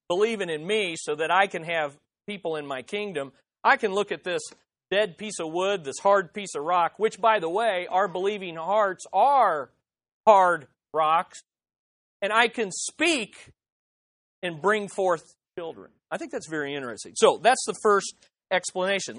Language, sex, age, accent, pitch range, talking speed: English, male, 40-59, American, 170-230 Hz, 170 wpm